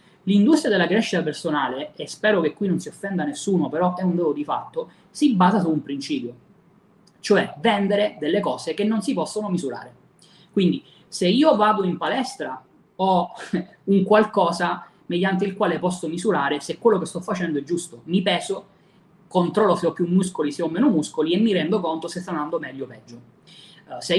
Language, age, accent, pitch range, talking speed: Italian, 20-39, native, 165-205 Hz, 185 wpm